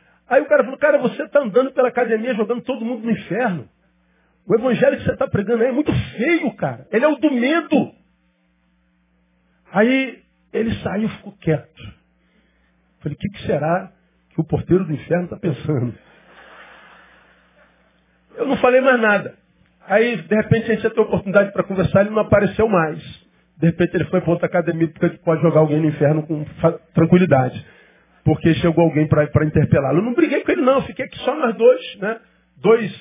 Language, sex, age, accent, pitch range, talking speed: Portuguese, male, 50-69, Brazilian, 160-220 Hz, 185 wpm